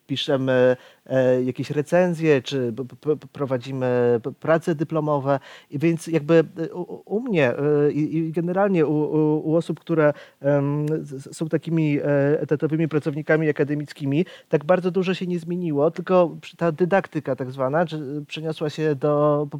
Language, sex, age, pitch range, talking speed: Polish, male, 30-49, 150-175 Hz, 115 wpm